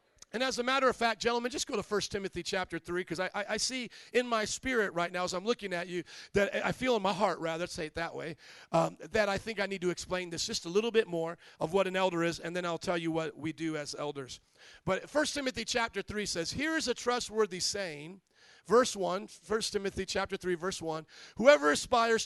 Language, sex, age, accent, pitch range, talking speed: English, male, 40-59, American, 180-220 Hz, 245 wpm